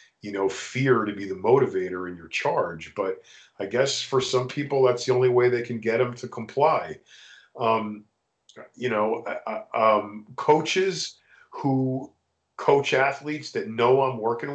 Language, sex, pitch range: English, male, 115-150 Hz